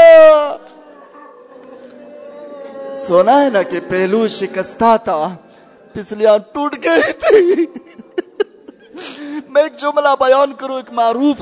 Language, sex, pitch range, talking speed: Urdu, male, 245-315 Hz, 95 wpm